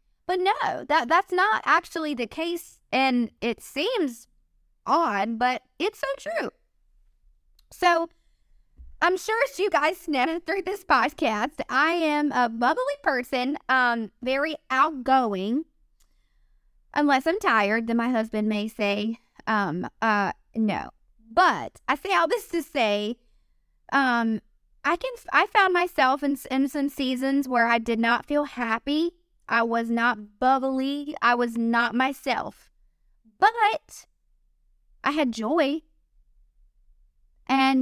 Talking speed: 125 wpm